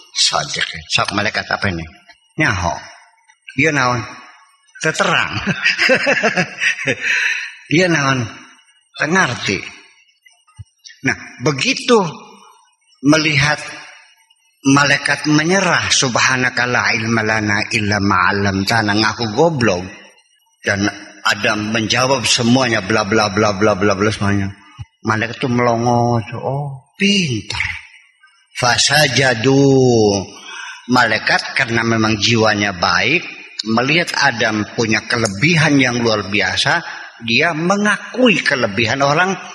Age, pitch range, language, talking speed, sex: 50-69, 110-165 Hz, Indonesian, 85 wpm, male